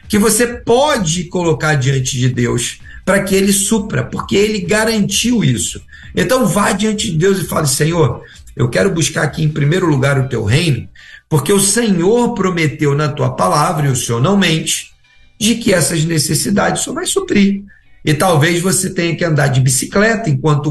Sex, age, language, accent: male, 50-69, Portuguese, Brazilian